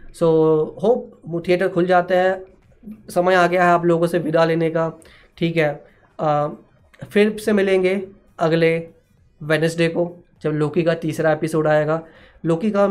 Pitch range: 160-195 Hz